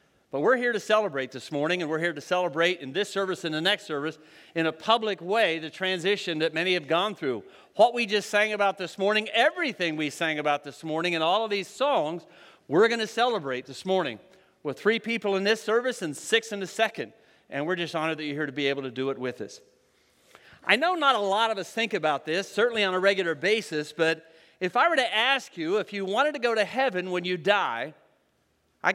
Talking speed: 235 wpm